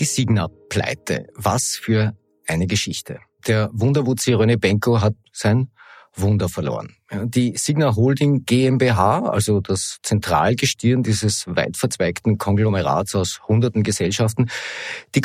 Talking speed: 110 wpm